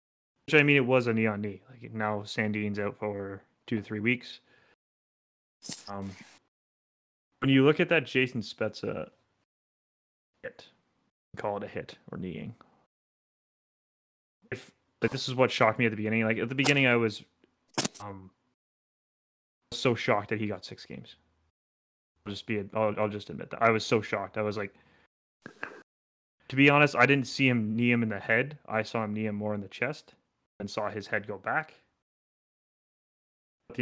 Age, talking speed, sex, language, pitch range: 20-39, 180 wpm, male, English, 105-120 Hz